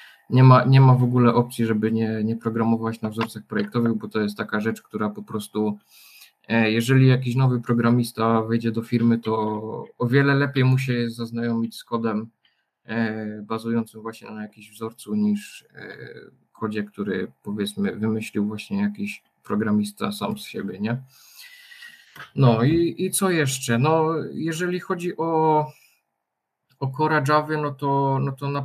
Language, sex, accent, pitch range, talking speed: Polish, male, native, 110-135 Hz, 145 wpm